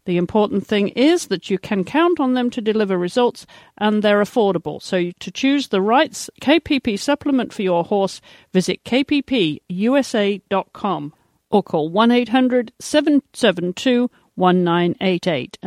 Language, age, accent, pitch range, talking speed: English, 50-69, British, 195-255 Hz, 120 wpm